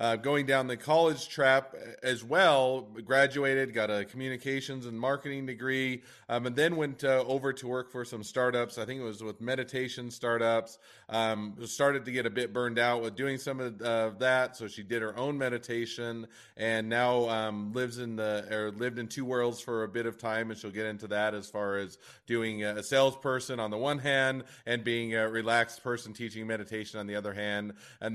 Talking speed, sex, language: 205 wpm, male, English